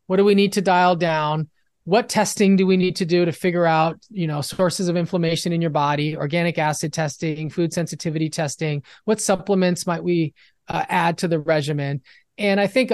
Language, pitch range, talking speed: English, 160-200 Hz, 200 wpm